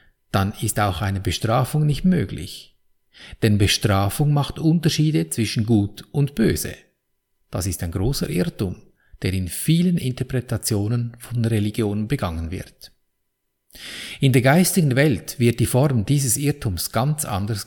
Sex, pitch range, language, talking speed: male, 100-145 Hz, German, 130 wpm